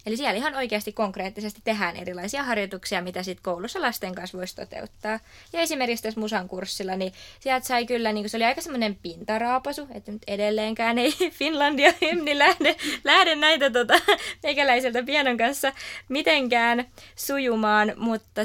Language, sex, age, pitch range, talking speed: Finnish, female, 20-39, 190-255 Hz, 150 wpm